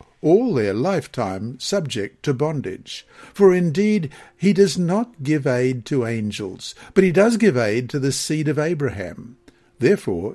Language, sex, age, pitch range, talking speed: English, male, 60-79, 115-170 Hz, 150 wpm